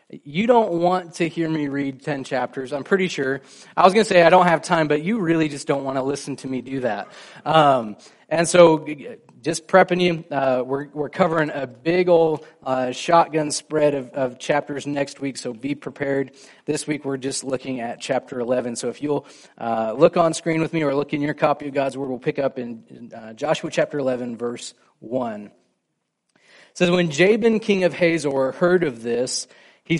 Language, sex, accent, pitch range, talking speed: English, male, American, 130-165 Hz, 210 wpm